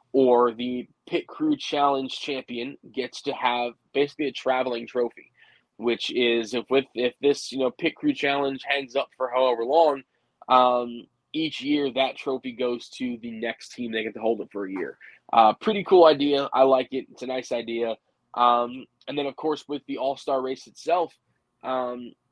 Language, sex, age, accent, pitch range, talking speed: English, male, 20-39, American, 120-145 Hz, 185 wpm